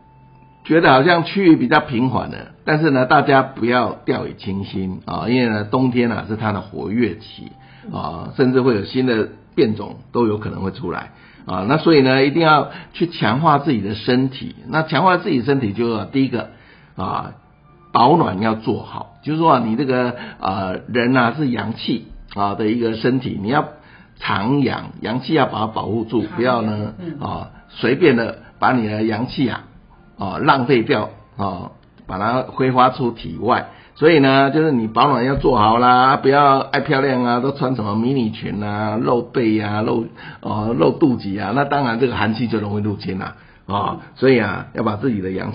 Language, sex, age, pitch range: Chinese, male, 50-69, 105-135 Hz